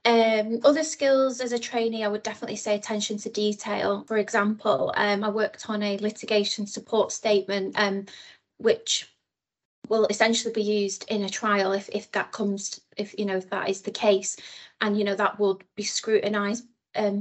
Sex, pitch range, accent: female, 200-220 Hz, British